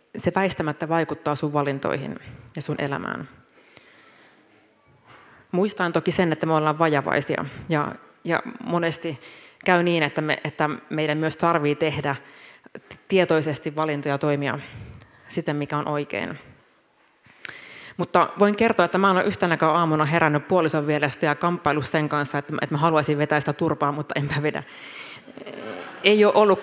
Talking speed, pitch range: 135 wpm, 150-180 Hz